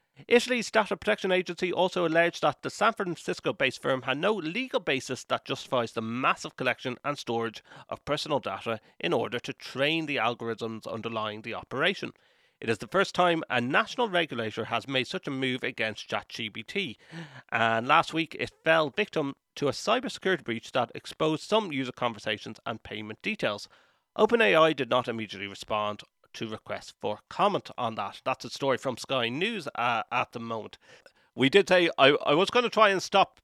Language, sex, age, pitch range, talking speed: English, male, 30-49, 115-185 Hz, 175 wpm